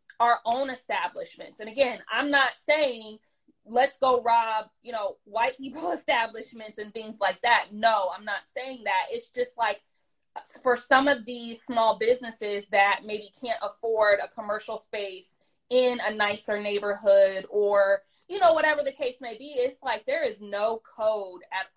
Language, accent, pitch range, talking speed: English, American, 205-245 Hz, 165 wpm